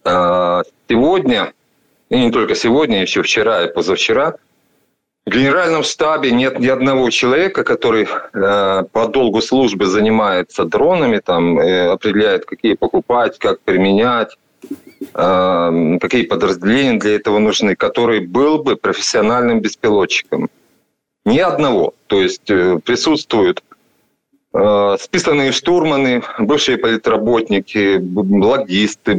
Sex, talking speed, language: male, 100 wpm, Ukrainian